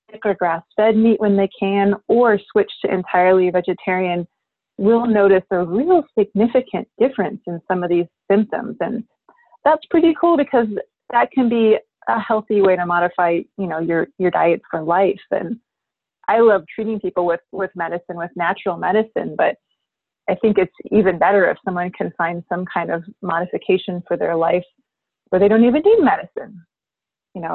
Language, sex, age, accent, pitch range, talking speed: English, female, 30-49, American, 175-220 Hz, 170 wpm